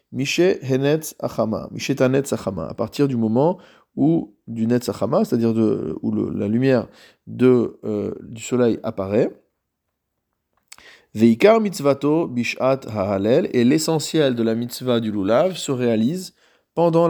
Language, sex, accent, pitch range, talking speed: French, male, French, 115-145 Hz, 145 wpm